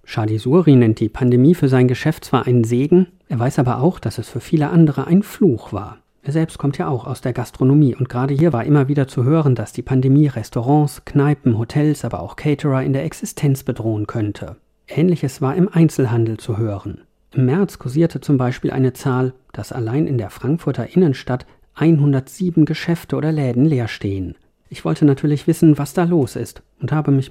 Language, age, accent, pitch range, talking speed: German, 40-59, German, 120-150 Hz, 190 wpm